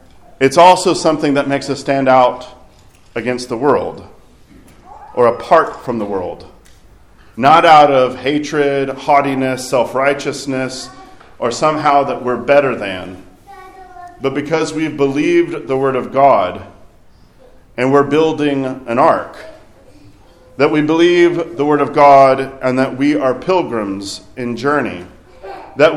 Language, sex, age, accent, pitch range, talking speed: English, male, 40-59, American, 125-150 Hz, 130 wpm